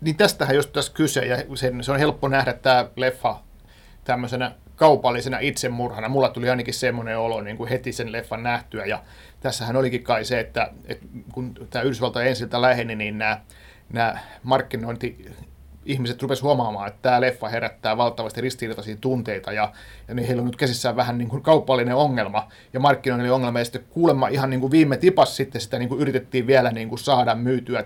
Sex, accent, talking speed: male, native, 180 wpm